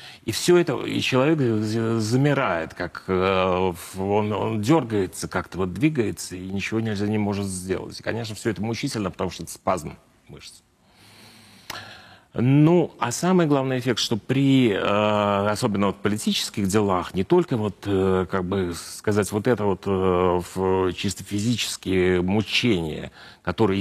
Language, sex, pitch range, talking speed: Ukrainian, male, 95-120 Hz, 135 wpm